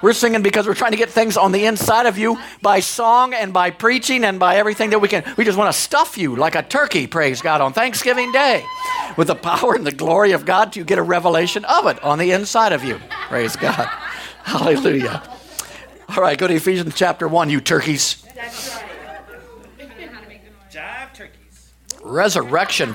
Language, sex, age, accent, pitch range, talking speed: English, male, 50-69, American, 130-210 Hz, 185 wpm